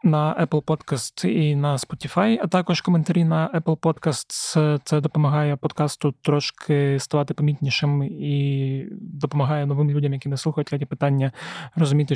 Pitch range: 140-160 Hz